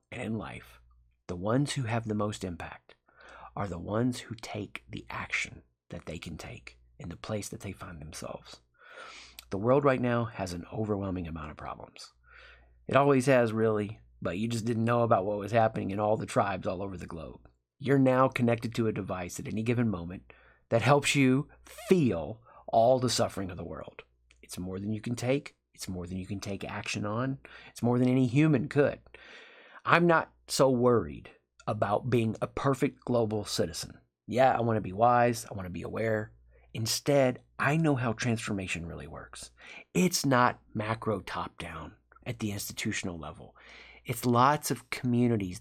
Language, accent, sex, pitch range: English, American, male, 90-125 Hz